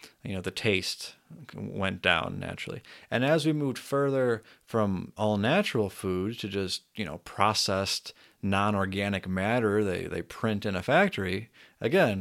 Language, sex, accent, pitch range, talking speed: English, male, American, 95-135 Hz, 145 wpm